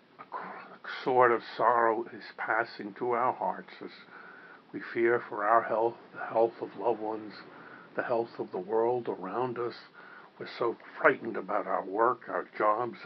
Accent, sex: American, male